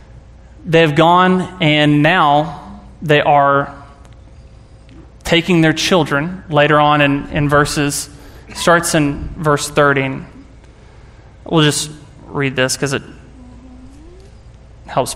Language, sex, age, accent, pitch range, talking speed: English, male, 20-39, American, 140-155 Hz, 100 wpm